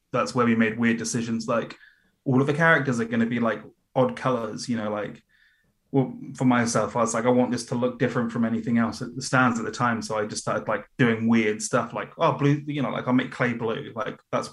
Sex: male